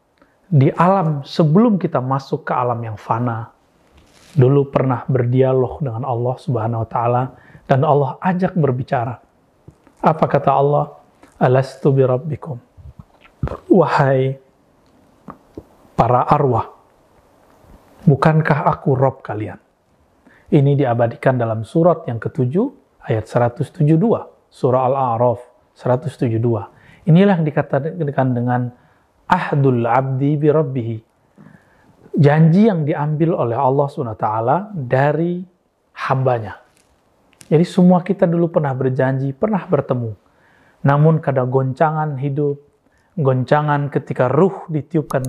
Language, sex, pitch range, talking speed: Indonesian, male, 125-155 Hz, 100 wpm